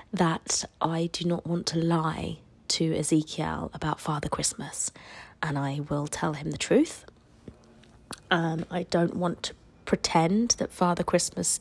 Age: 30-49